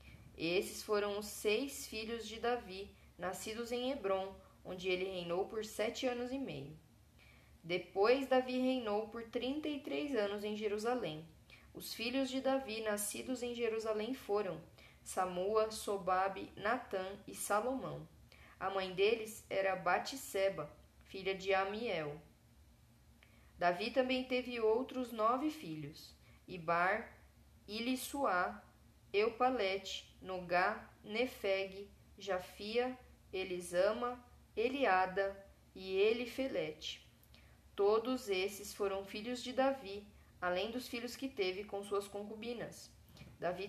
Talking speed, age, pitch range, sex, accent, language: 110 wpm, 10-29, 185-240 Hz, female, Brazilian, Portuguese